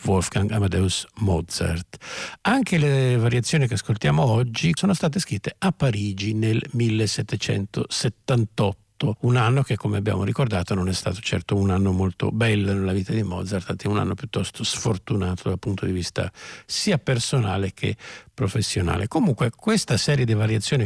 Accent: native